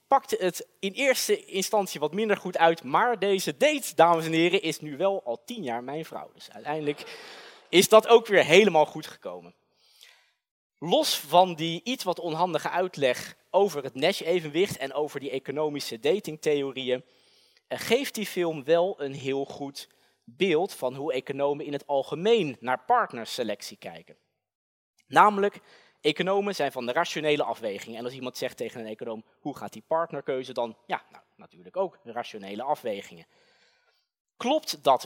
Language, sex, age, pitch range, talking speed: Dutch, male, 20-39, 140-205 Hz, 155 wpm